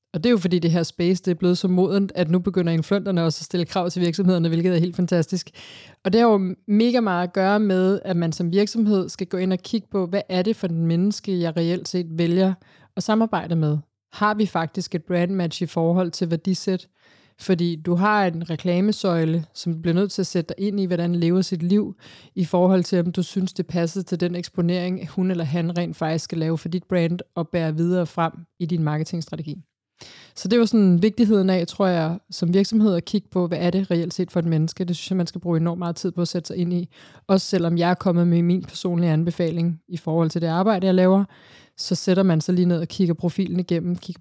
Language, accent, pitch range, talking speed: Danish, native, 170-190 Hz, 240 wpm